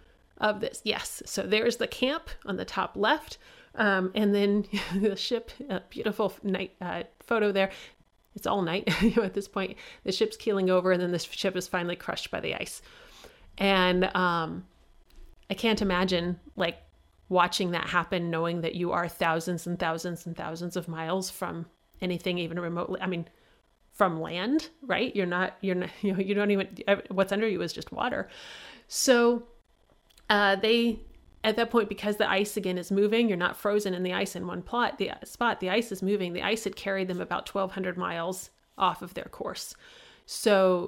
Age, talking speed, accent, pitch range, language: 30-49, 185 wpm, American, 180-215 Hz, English